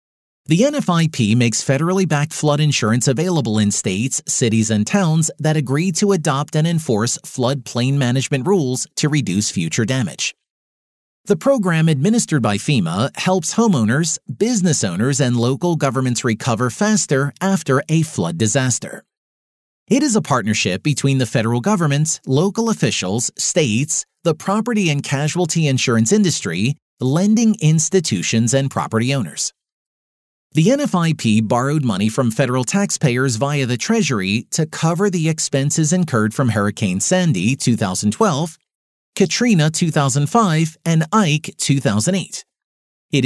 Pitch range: 125-175 Hz